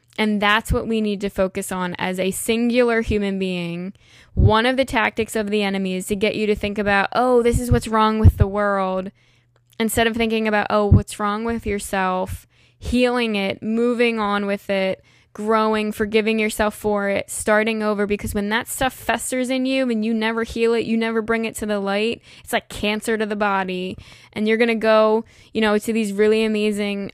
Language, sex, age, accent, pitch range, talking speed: English, female, 10-29, American, 195-225 Hz, 205 wpm